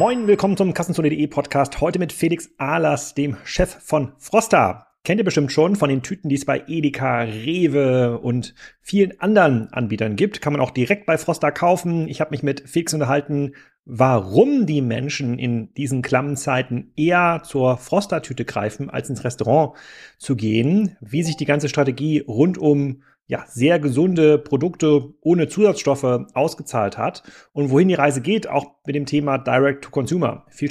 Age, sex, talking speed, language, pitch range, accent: 30-49, male, 165 wpm, German, 115-155 Hz, German